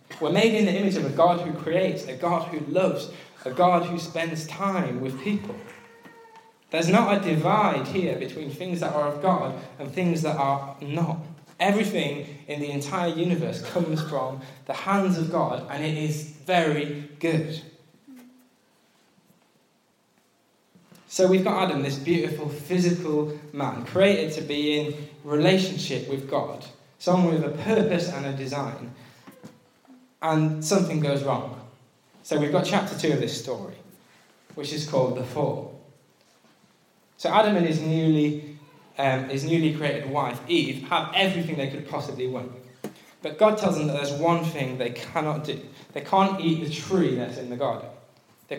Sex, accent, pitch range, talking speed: male, British, 140-180 Hz, 160 wpm